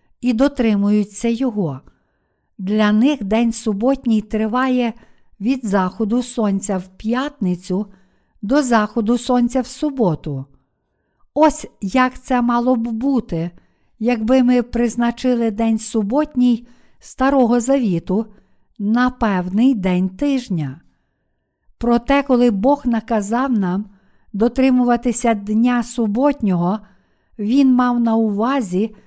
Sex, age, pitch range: female, 50-69, 210-255 Hz